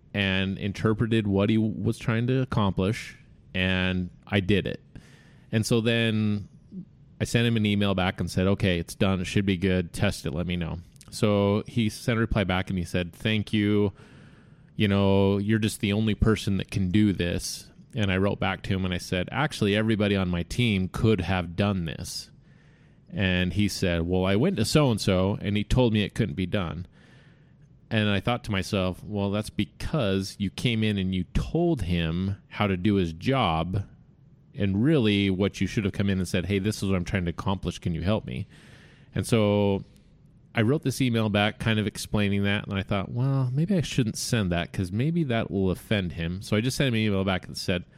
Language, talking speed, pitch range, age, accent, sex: English, 210 wpm, 95-115 Hz, 30-49, American, male